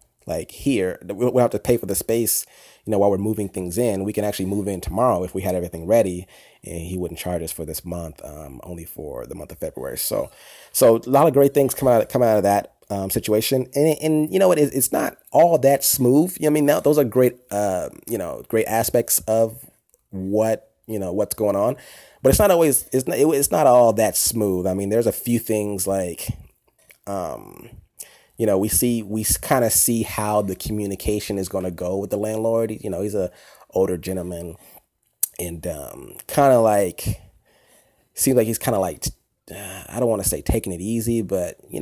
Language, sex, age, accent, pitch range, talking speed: English, male, 30-49, American, 95-115 Hz, 215 wpm